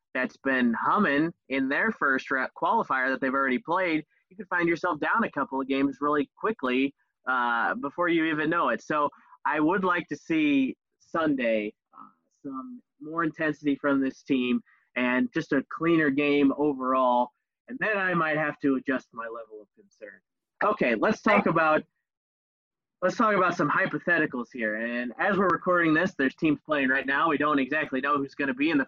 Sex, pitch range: male, 135-195 Hz